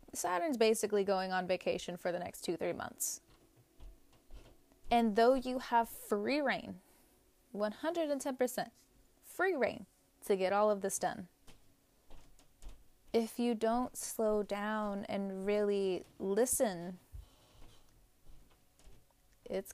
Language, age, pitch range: English, 20-39, 190-240 Hz